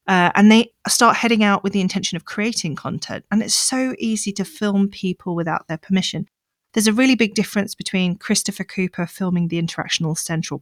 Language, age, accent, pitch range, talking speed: English, 40-59, British, 170-220 Hz, 190 wpm